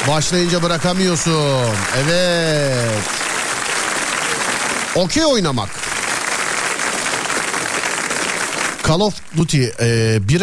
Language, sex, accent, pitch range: Turkish, male, native, 115-175 Hz